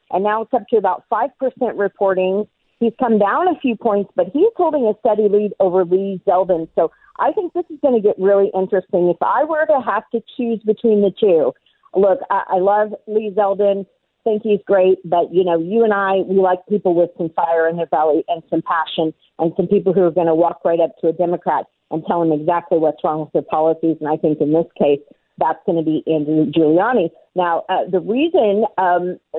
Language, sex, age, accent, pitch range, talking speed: English, female, 40-59, American, 170-210 Hz, 225 wpm